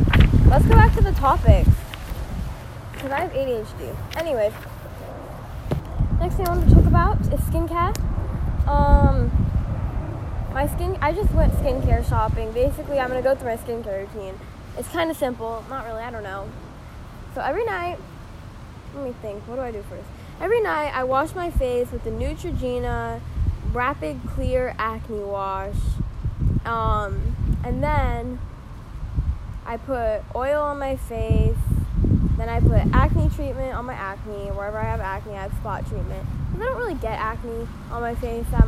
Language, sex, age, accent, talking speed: English, female, 10-29, American, 160 wpm